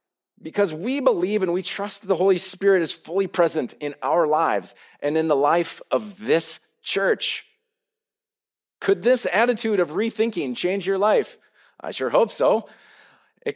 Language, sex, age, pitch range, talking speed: English, male, 40-59, 155-210 Hz, 155 wpm